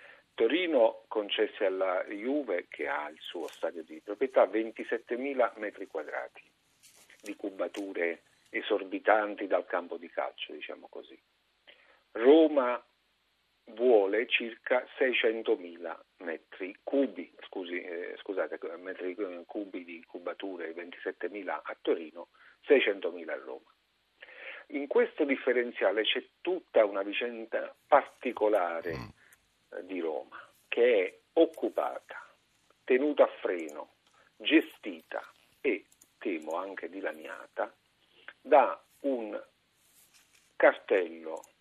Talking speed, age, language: 95 wpm, 50-69, Italian